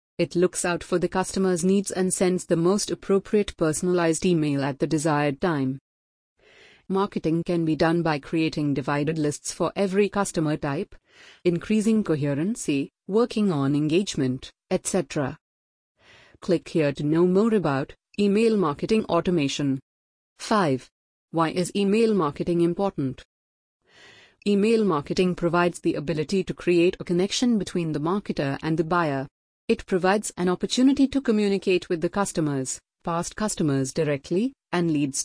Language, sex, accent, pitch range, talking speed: English, female, Indian, 150-195 Hz, 135 wpm